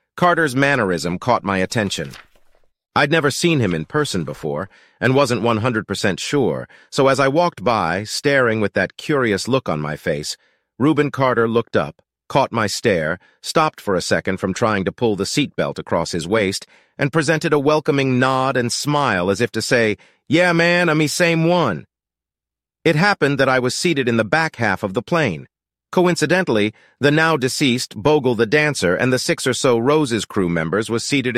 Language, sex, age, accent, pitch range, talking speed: English, male, 40-59, American, 105-145 Hz, 180 wpm